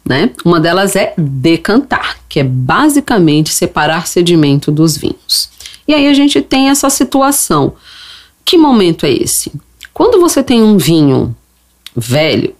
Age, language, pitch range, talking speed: 40-59, Portuguese, 165-260 Hz, 140 wpm